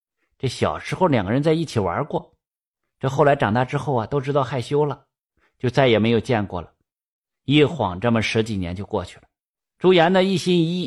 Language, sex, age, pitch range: Chinese, male, 50-69, 125-160 Hz